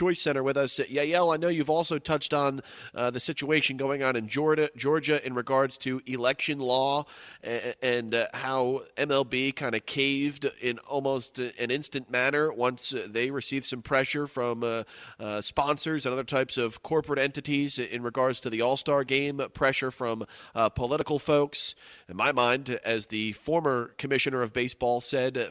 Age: 30-49